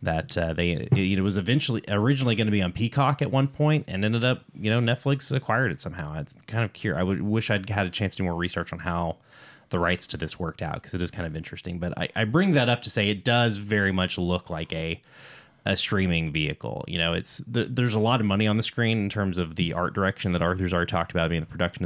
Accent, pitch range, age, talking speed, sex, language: American, 85-115 Hz, 20-39, 265 wpm, male, English